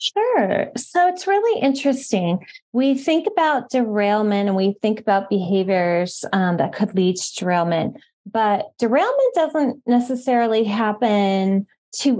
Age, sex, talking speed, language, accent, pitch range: 20-39, female, 130 wpm, English, American, 200-270 Hz